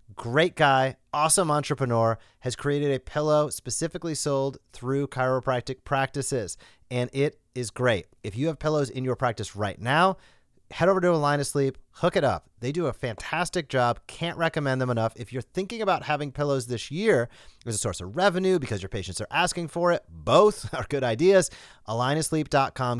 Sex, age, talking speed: male, 30-49, 185 wpm